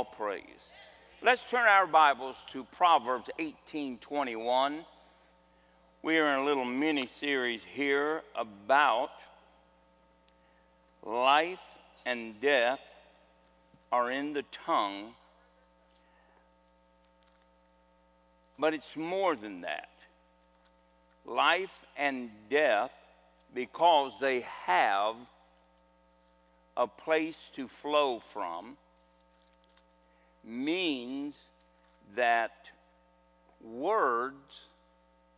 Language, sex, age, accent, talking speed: English, male, 60-79, American, 75 wpm